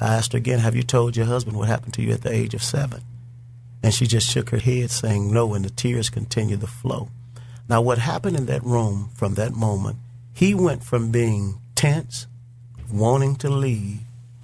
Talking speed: 205 wpm